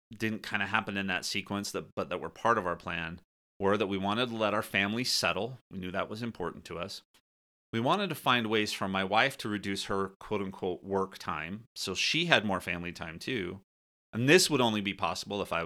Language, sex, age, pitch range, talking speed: English, male, 30-49, 85-120 Hz, 225 wpm